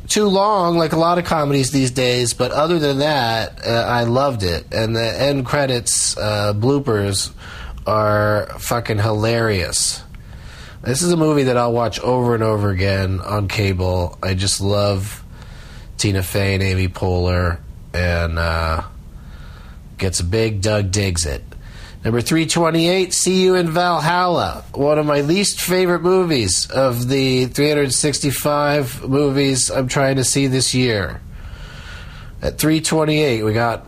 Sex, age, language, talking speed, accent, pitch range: male, 30-49, English, 145 wpm, American, 95-145 Hz